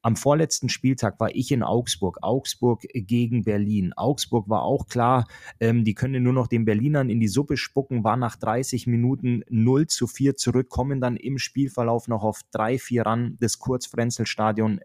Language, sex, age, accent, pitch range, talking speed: German, male, 30-49, German, 110-125 Hz, 180 wpm